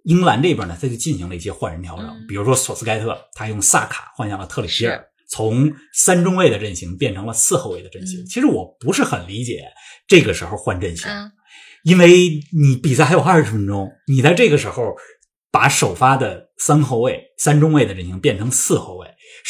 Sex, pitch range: male, 110-160 Hz